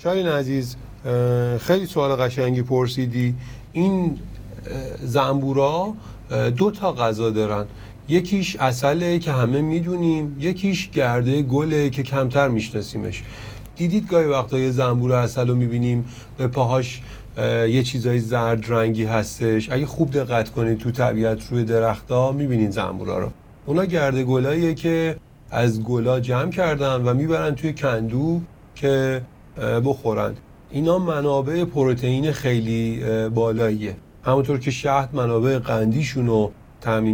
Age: 30-49